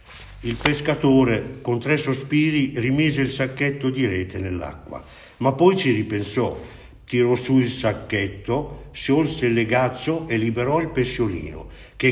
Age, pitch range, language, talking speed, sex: 50-69, 100-150 Hz, Italian, 135 wpm, male